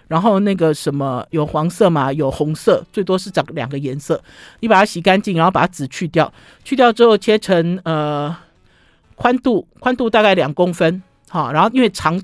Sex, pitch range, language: male, 150-205 Hz, Chinese